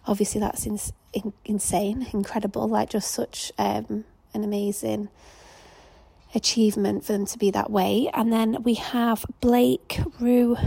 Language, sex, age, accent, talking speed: English, female, 30-49, British, 130 wpm